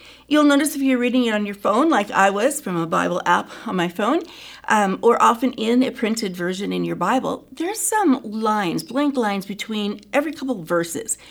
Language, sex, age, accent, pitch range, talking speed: English, female, 40-59, American, 195-270 Hz, 205 wpm